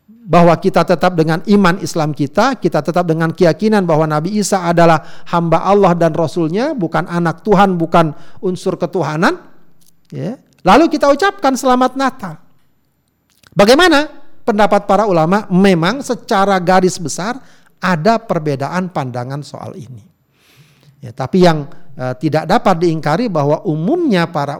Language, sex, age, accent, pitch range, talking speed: Indonesian, male, 50-69, native, 155-205 Hz, 125 wpm